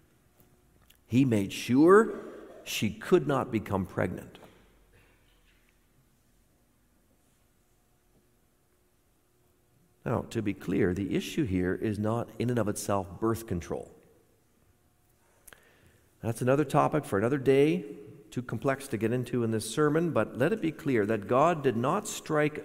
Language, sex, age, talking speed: English, male, 60-79, 125 wpm